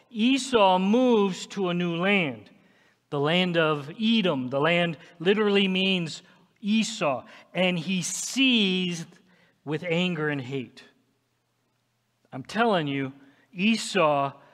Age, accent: 50-69, American